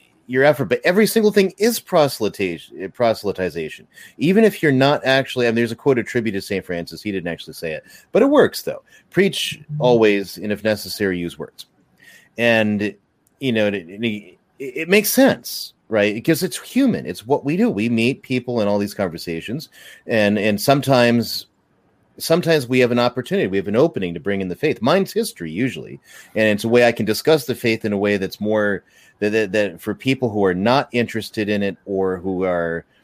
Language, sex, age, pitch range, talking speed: English, male, 30-49, 105-145 Hz, 195 wpm